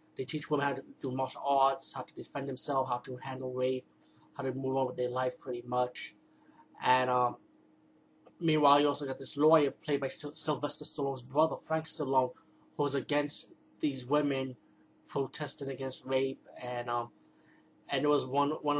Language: English